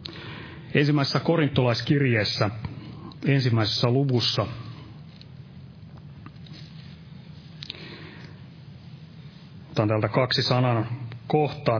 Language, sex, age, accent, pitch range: Finnish, male, 30-49, native, 115-150 Hz